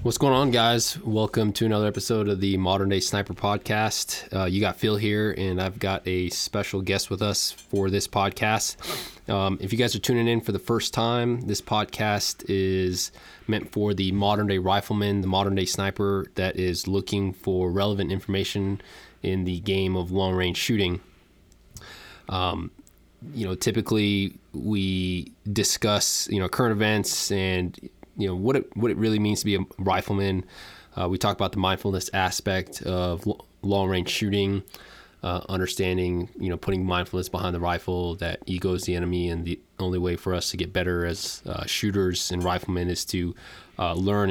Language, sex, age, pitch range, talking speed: English, male, 20-39, 90-105 Hz, 180 wpm